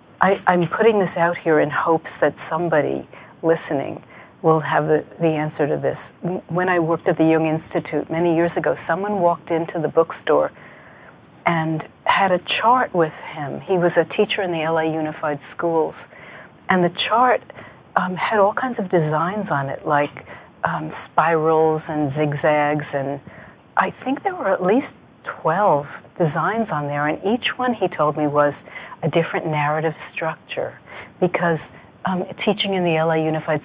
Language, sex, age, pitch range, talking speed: English, female, 50-69, 150-175 Hz, 165 wpm